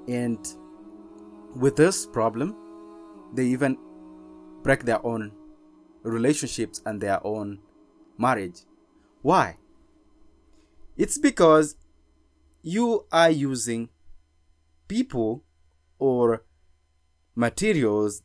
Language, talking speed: English, 75 wpm